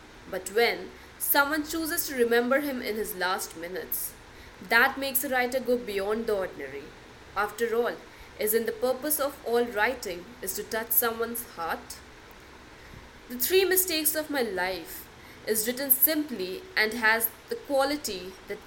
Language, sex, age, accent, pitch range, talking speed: English, female, 20-39, Indian, 195-265 Hz, 150 wpm